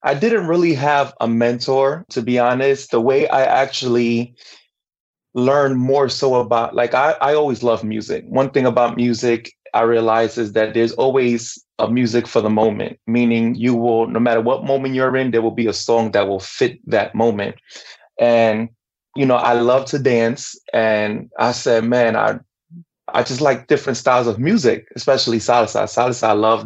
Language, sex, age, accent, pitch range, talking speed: English, male, 20-39, American, 115-130 Hz, 180 wpm